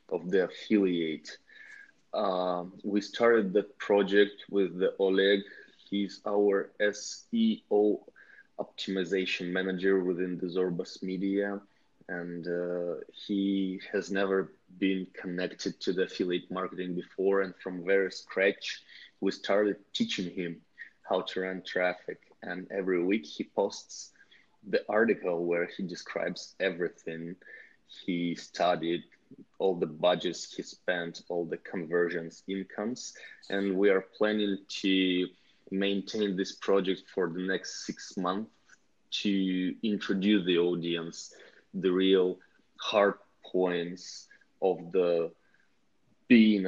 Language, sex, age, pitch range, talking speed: English, male, 20-39, 90-100 Hz, 115 wpm